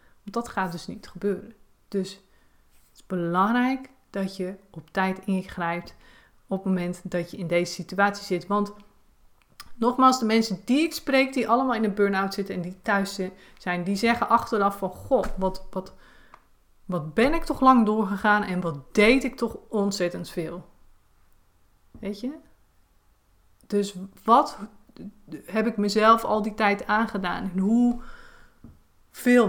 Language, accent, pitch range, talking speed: Dutch, Dutch, 190-230 Hz, 150 wpm